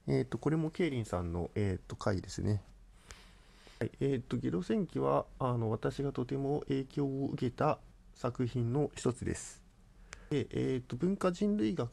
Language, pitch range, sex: Japanese, 95-140 Hz, male